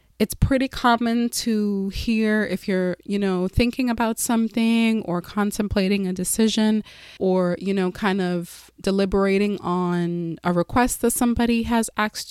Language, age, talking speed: English, 20-39, 140 wpm